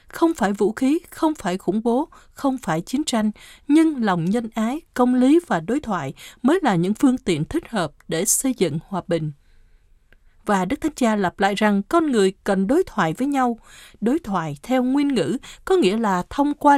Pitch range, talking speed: 180-275 Hz, 205 wpm